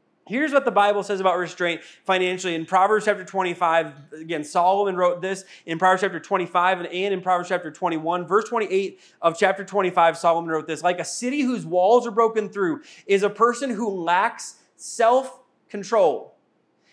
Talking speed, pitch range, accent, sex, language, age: 170 wpm, 185-230 Hz, American, male, English, 20-39